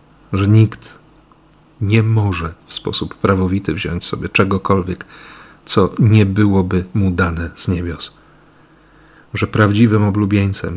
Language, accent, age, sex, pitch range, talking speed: Polish, native, 40-59, male, 95-135 Hz, 110 wpm